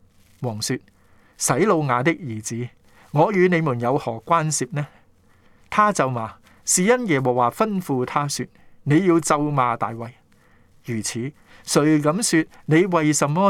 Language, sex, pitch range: Chinese, male, 115-160 Hz